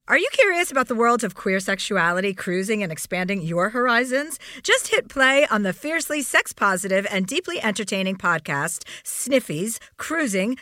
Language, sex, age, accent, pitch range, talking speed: English, female, 50-69, American, 190-265 Hz, 155 wpm